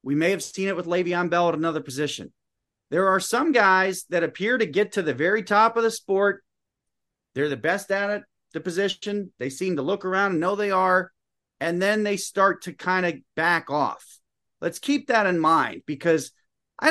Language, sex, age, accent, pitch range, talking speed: English, male, 40-59, American, 155-200 Hz, 205 wpm